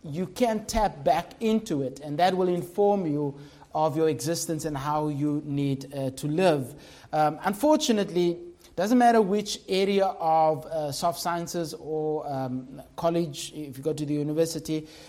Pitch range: 155-200 Hz